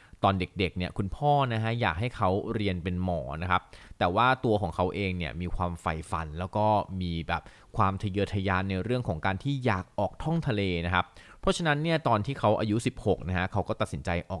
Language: Thai